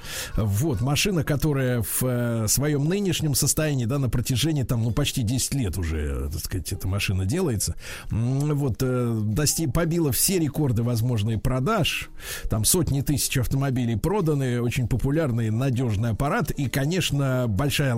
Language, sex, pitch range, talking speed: Russian, male, 110-145 Hz, 140 wpm